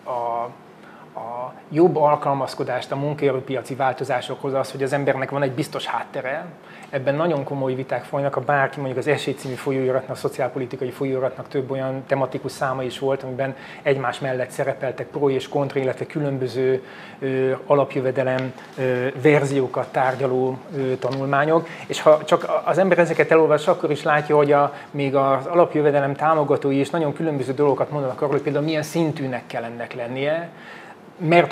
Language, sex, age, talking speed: Hungarian, male, 30-49, 145 wpm